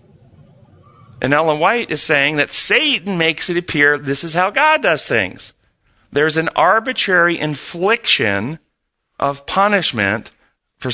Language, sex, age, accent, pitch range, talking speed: English, male, 50-69, American, 125-165 Hz, 125 wpm